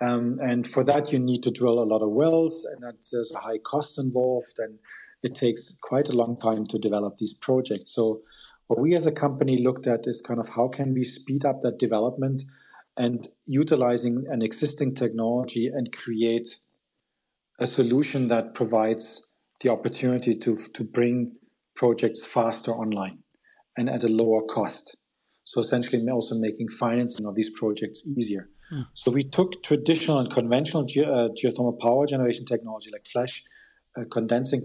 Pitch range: 115-130 Hz